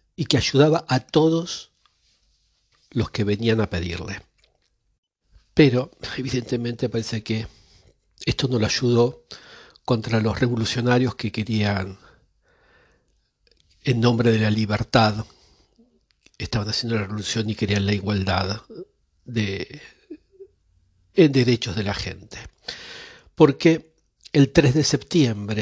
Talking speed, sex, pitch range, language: 110 wpm, male, 105-130 Hz, Spanish